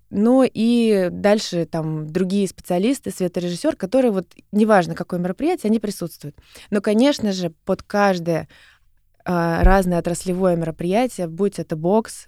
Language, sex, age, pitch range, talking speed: Russian, female, 20-39, 175-205 Hz, 125 wpm